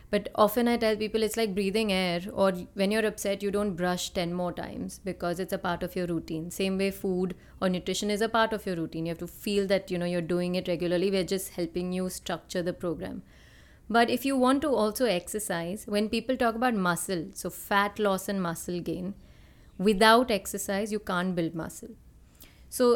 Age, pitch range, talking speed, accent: 30-49, 175-210 Hz, 210 wpm, Indian